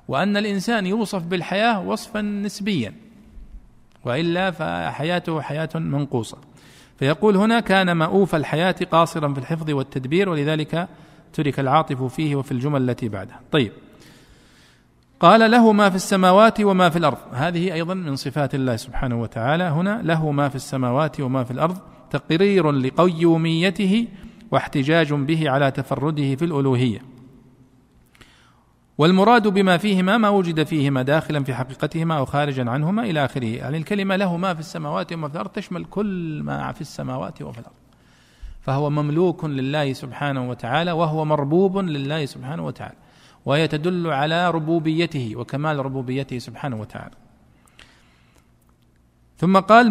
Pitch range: 135-180 Hz